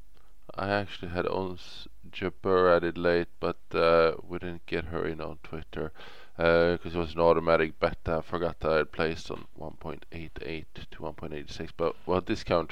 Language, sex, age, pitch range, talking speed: English, male, 20-39, 80-90 Hz, 205 wpm